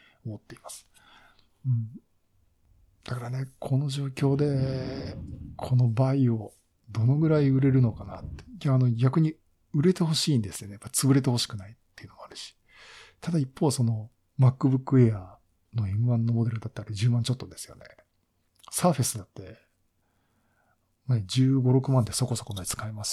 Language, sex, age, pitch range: Japanese, male, 50-69, 110-135 Hz